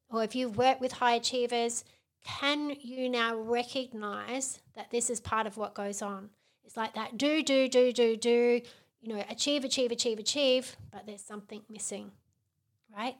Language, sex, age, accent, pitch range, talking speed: English, female, 30-49, Australian, 215-250 Hz, 175 wpm